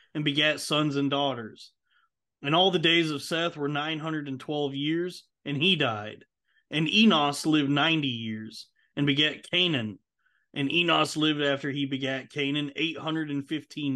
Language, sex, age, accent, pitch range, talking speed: English, male, 30-49, American, 140-160 Hz, 140 wpm